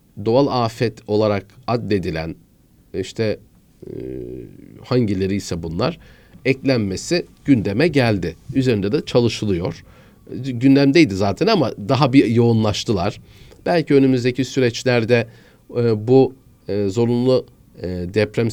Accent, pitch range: native, 100-125 Hz